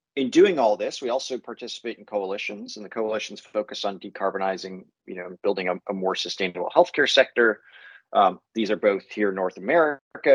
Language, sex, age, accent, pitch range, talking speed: English, male, 30-49, American, 105-135 Hz, 185 wpm